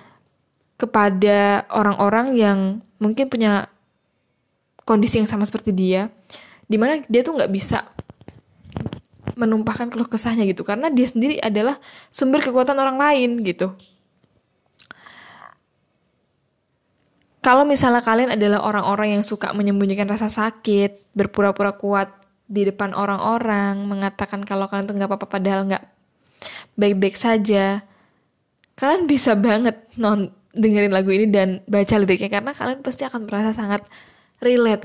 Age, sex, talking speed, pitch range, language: 10-29, female, 120 wpm, 200-240 Hz, Indonesian